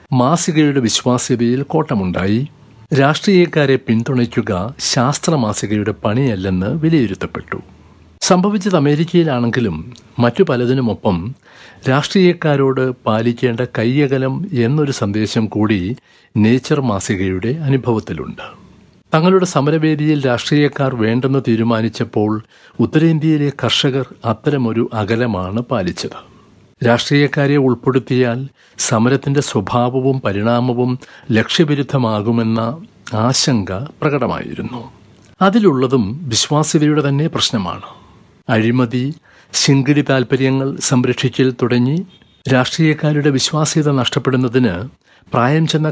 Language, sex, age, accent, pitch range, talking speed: Malayalam, male, 60-79, native, 115-150 Hz, 70 wpm